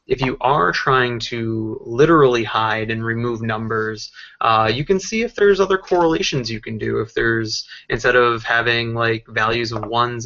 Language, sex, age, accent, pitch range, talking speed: English, male, 20-39, American, 110-130 Hz, 175 wpm